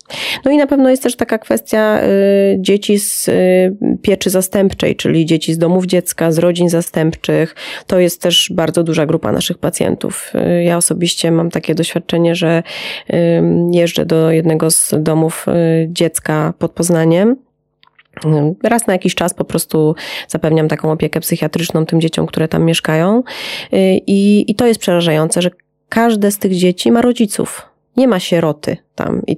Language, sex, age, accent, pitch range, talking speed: Polish, female, 30-49, native, 160-190 Hz, 145 wpm